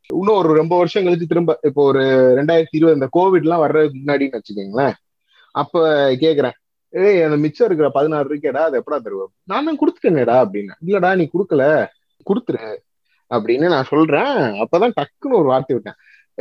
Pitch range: 140-210 Hz